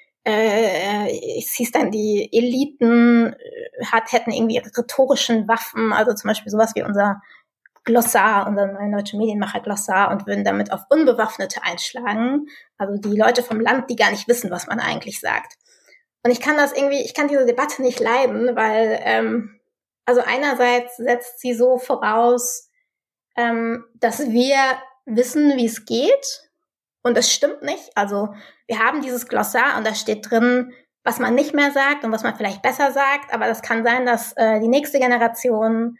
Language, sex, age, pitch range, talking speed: German, female, 20-39, 225-260 Hz, 170 wpm